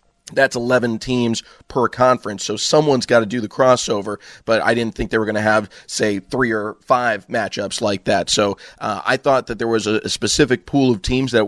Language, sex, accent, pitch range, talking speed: English, male, American, 110-130 Hz, 215 wpm